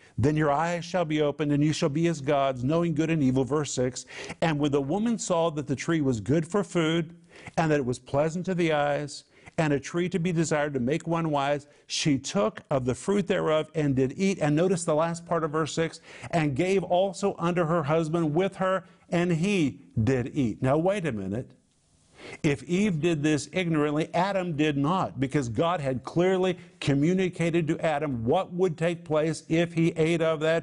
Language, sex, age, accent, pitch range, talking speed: English, male, 50-69, American, 145-180 Hz, 205 wpm